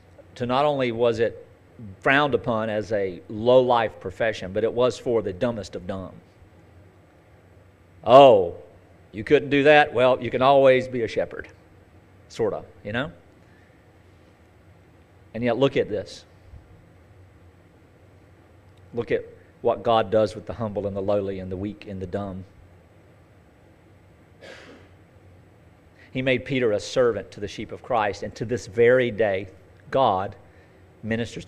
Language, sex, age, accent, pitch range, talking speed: English, male, 40-59, American, 90-130 Hz, 140 wpm